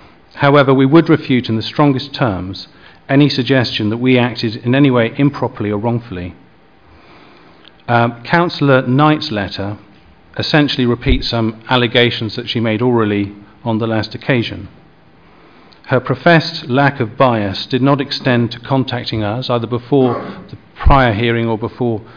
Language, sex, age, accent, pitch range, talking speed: English, male, 40-59, British, 110-130 Hz, 145 wpm